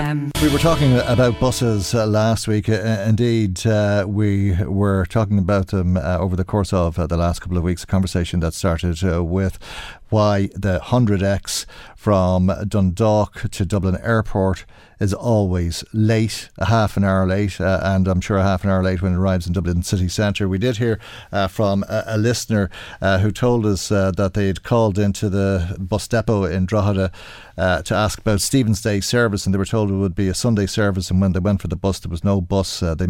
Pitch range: 95-110 Hz